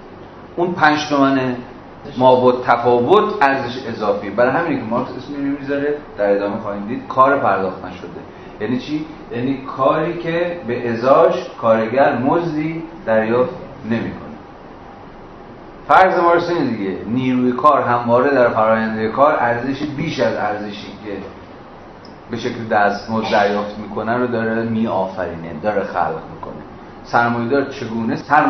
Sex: male